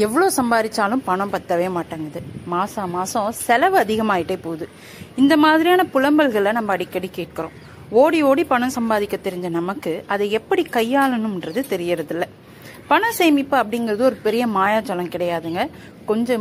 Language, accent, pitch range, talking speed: Tamil, native, 185-260 Hz, 130 wpm